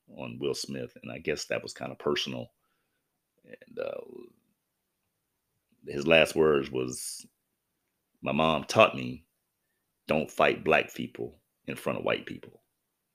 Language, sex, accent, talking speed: English, male, American, 135 wpm